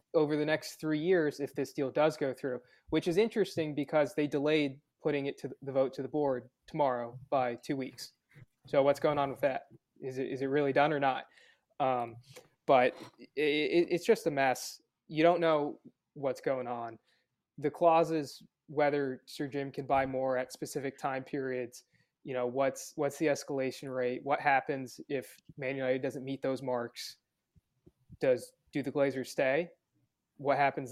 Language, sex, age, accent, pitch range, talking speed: English, male, 20-39, American, 130-155 Hz, 175 wpm